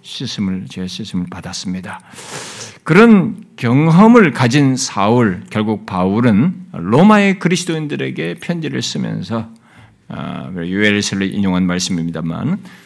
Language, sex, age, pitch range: Korean, male, 50-69, 120-195 Hz